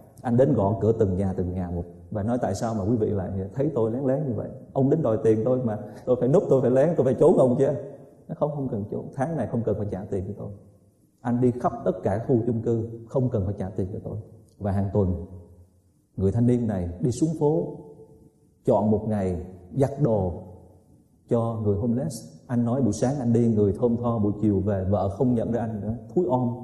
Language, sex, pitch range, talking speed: Vietnamese, male, 105-155 Hz, 240 wpm